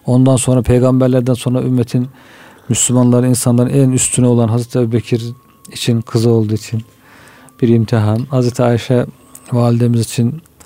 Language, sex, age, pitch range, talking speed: Turkish, male, 40-59, 115-130 Hz, 125 wpm